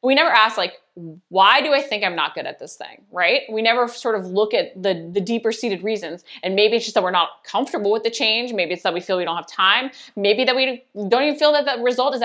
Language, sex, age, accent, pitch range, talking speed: English, female, 20-39, American, 180-245 Hz, 275 wpm